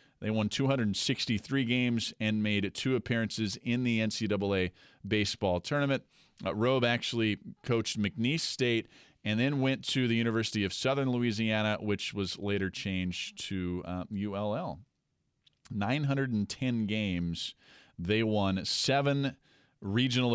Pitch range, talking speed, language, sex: 90-120 Hz, 120 wpm, English, male